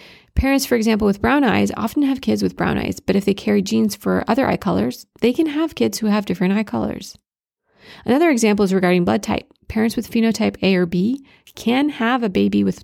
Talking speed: 220 wpm